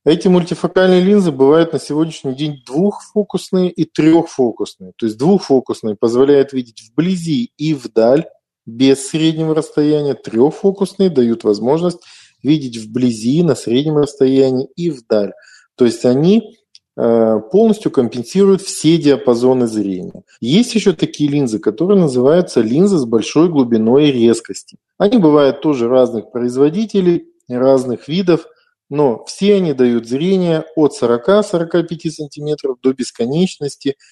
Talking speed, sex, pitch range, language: 120 wpm, male, 120-170 Hz, Russian